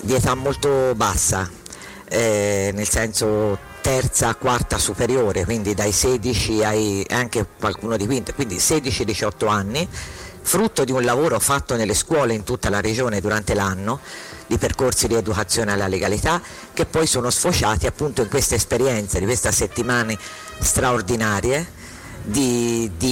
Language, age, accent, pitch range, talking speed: Italian, 50-69, native, 100-125 Hz, 140 wpm